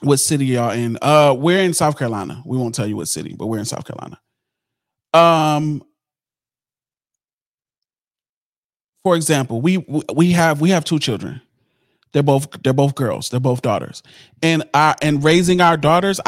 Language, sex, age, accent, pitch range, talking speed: English, male, 30-49, American, 120-145 Hz, 160 wpm